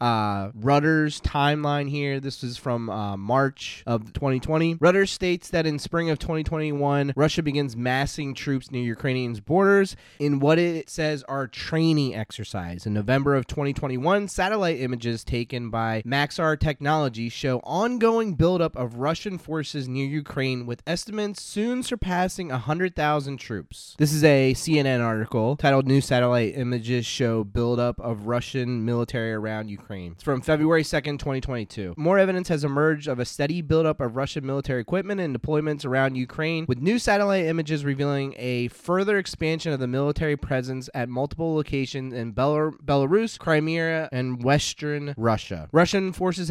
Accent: American